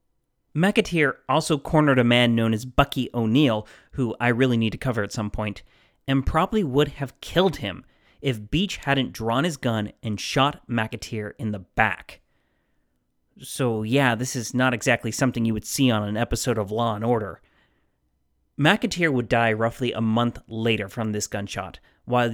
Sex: male